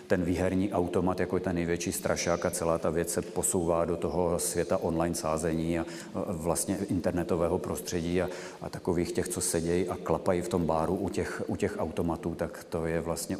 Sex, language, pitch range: male, Czech, 90-100 Hz